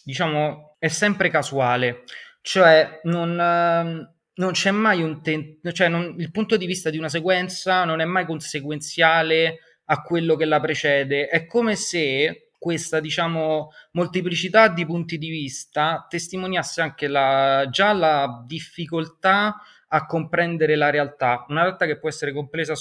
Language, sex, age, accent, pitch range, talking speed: Italian, male, 20-39, native, 140-170 Hz, 145 wpm